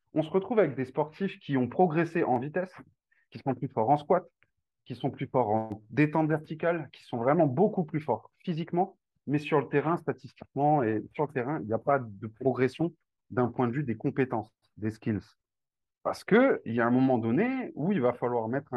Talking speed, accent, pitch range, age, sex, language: 210 wpm, French, 125-175 Hz, 30-49, male, French